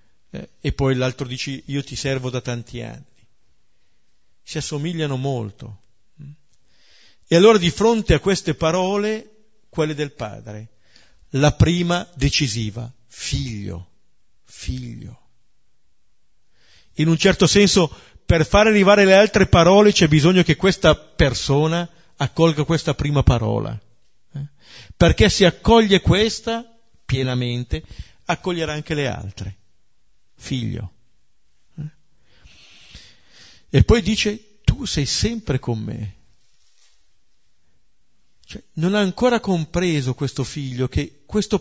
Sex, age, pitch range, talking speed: male, 50-69, 110-185 Hz, 105 wpm